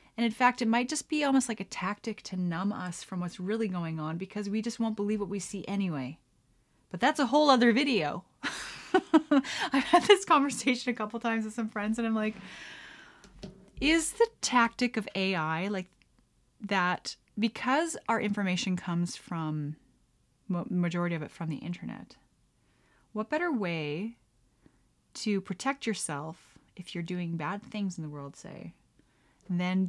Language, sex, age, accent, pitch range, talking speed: English, female, 30-49, American, 175-245 Hz, 165 wpm